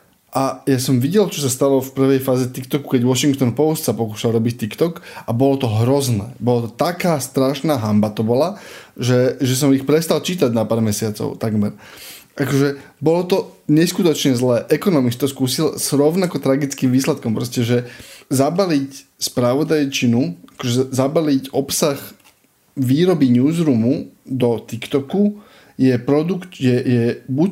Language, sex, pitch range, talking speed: Slovak, male, 125-145 Hz, 145 wpm